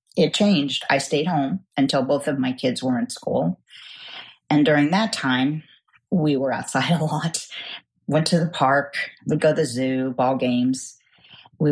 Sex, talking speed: female, 175 wpm